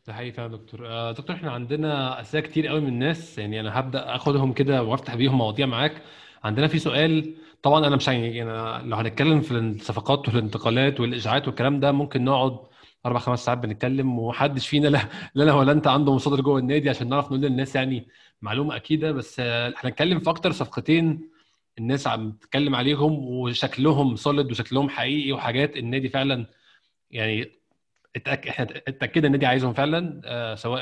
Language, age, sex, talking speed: Arabic, 20-39, male, 165 wpm